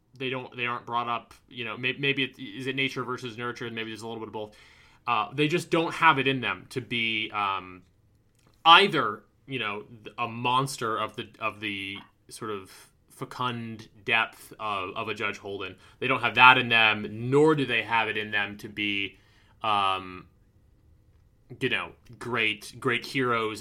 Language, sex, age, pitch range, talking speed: English, male, 20-39, 105-135 Hz, 185 wpm